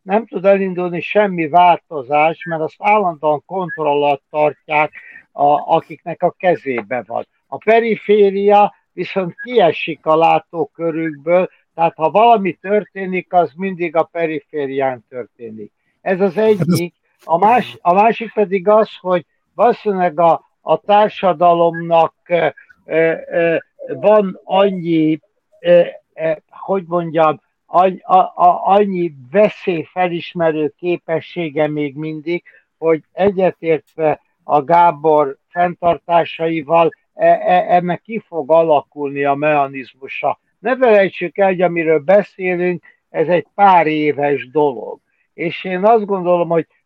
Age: 60-79